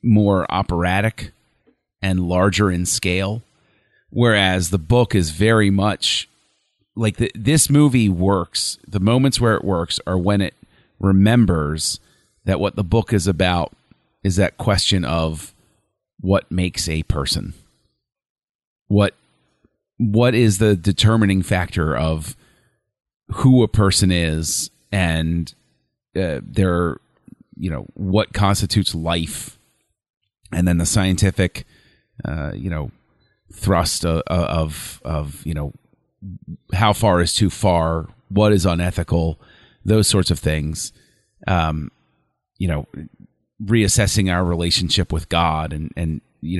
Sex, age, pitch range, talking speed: male, 30-49, 85-105 Hz, 120 wpm